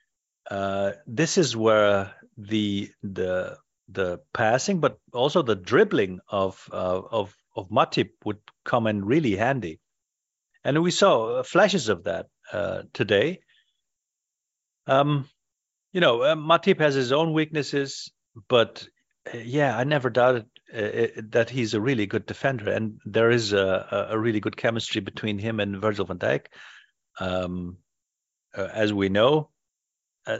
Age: 50-69